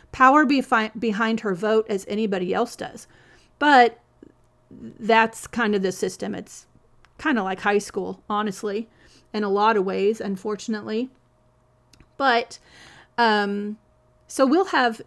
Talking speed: 125 wpm